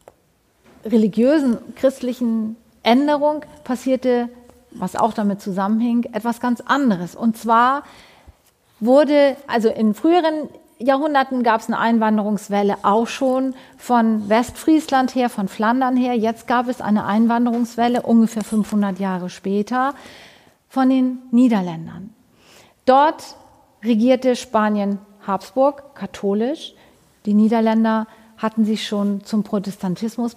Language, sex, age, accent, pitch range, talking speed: German, female, 40-59, German, 210-255 Hz, 105 wpm